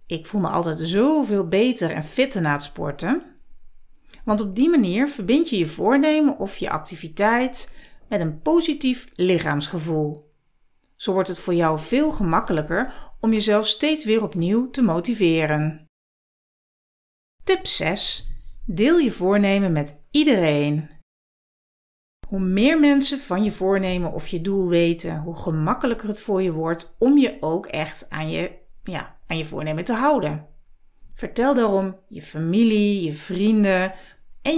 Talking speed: 140 wpm